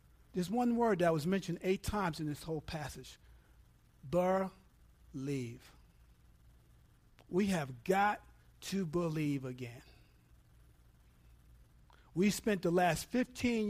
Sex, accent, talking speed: male, American, 105 wpm